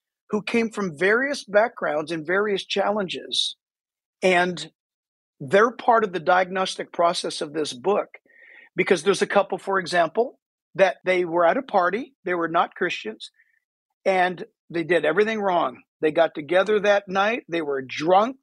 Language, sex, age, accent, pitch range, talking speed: English, male, 50-69, American, 160-210 Hz, 155 wpm